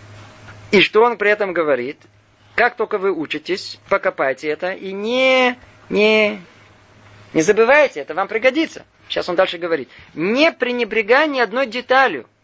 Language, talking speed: Russian, 135 wpm